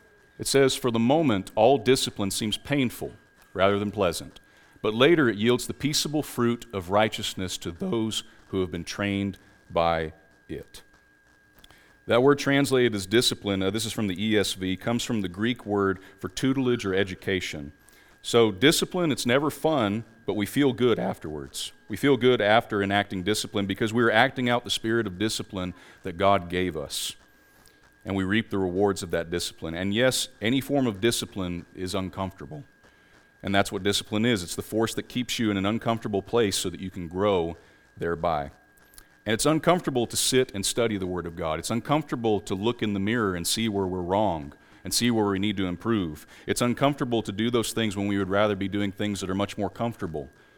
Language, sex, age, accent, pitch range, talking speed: English, male, 40-59, American, 95-120 Hz, 190 wpm